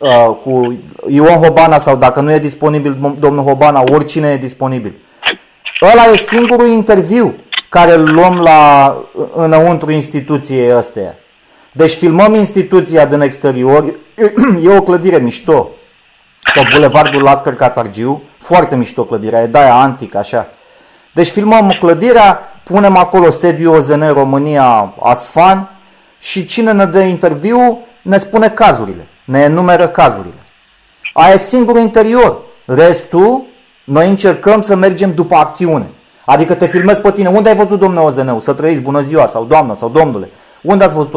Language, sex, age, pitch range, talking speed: Romanian, male, 30-49, 140-195 Hz, 140 wpm